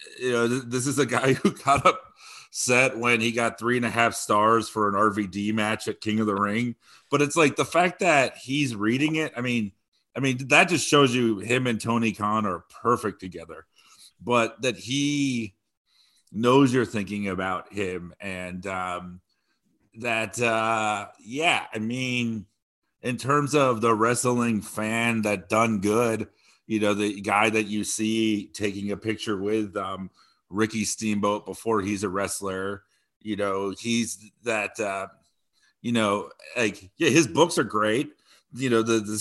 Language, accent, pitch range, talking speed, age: English, American, 105-120 Hz, 165 wpm, 40-59